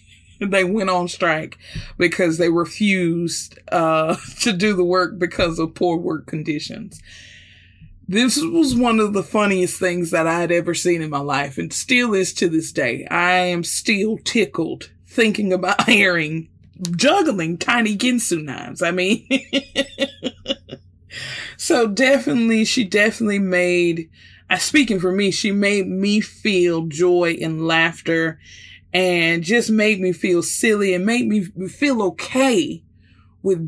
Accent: American